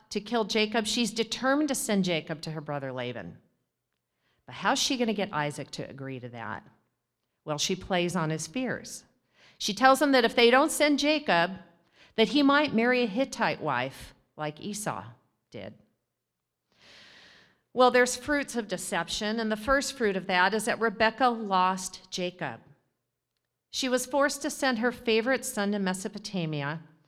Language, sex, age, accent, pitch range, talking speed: English, female, 50-69, American, 165-235 Hz, 165 wpm